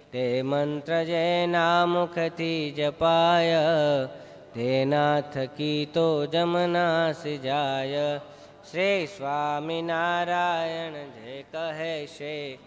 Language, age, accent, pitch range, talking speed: Gujarati, 20-39, native, 145-165 Hz, 65 wpm